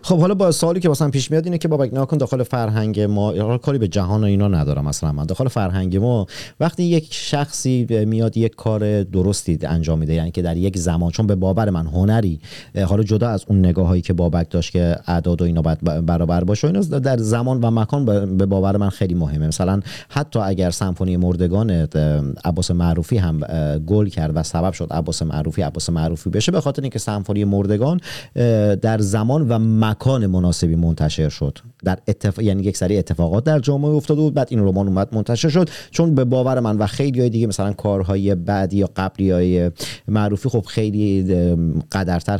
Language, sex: Persian, male